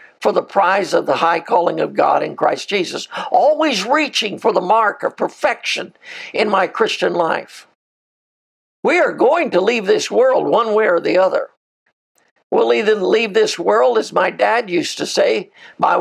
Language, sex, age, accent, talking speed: English, male, 60-79, American, 175 wpm